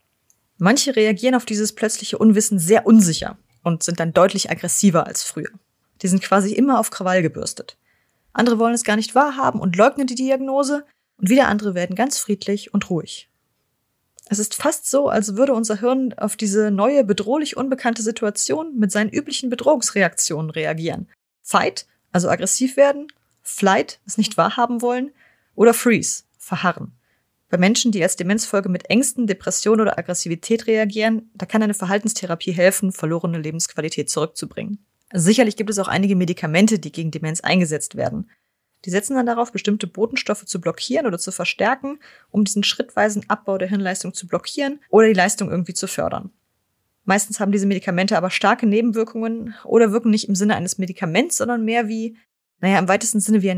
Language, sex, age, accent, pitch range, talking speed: German, female, 20-39, German, 185-235 Hz, 165 wpm